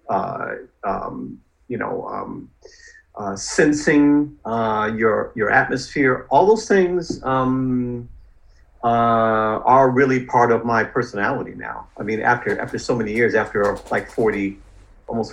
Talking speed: 135 wpm